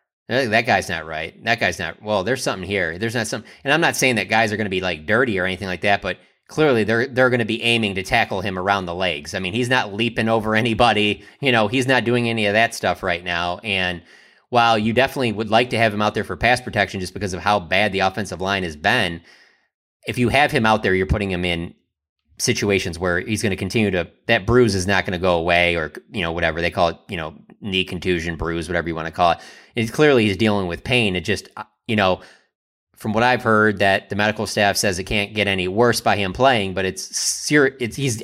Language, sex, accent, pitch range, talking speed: English, male, American, 90-115 Hz, 255 wpm